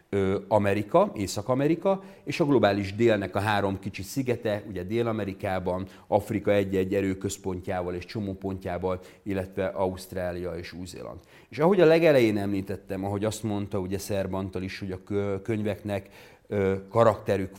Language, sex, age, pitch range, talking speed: Hungarian, male, 40-59, 95-105 Hz, 125 wpm